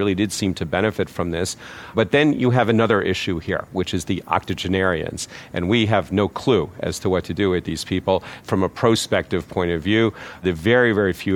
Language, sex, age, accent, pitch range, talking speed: English, male, 50-69, American, 95-115 Hz, 215 wpm